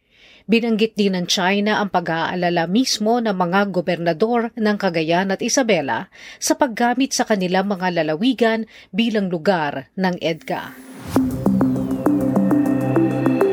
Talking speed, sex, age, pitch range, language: 105 wpm, female, 40-59, 175-220 Hz, Filipino